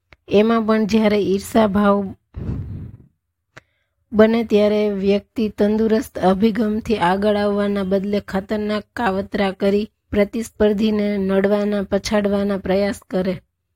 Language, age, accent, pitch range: Gujarati, 20-39, native, 190-215 Hz